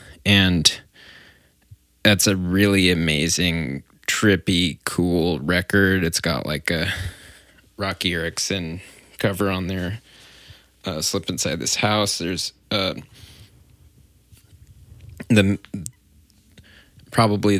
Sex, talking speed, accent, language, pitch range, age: male, 90 wpm, American, English, 85-100 Hz, 20-39